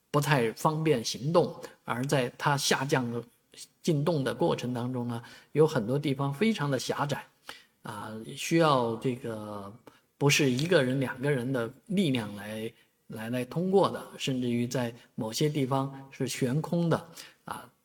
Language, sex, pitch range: Chinese, male, 120-160 Hz